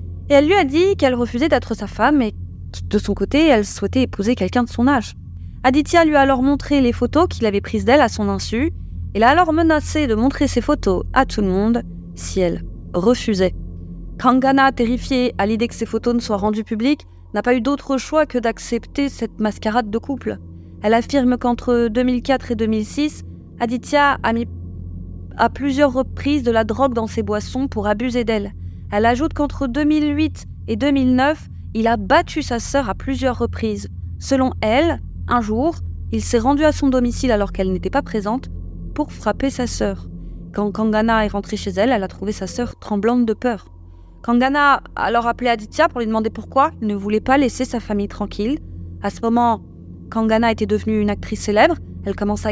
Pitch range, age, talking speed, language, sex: 195-265 Hz, 20-39, 190 wpm, French, female